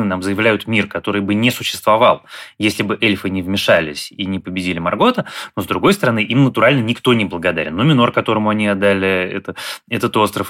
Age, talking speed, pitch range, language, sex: 20-39, 190 wpm, 95-120 Hz, Russian, male